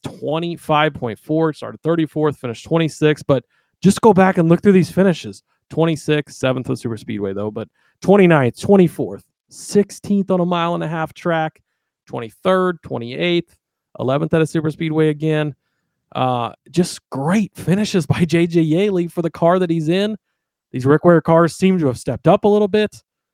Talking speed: 165 wpm